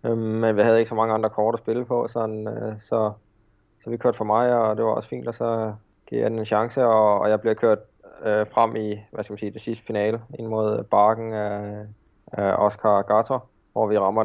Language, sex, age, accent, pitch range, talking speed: Danish, male, 20-39, native, 105-115 Hz, 230 wpm